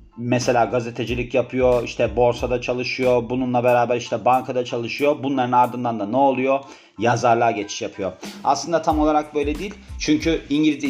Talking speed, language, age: 145 wpm, Turkish, 40-59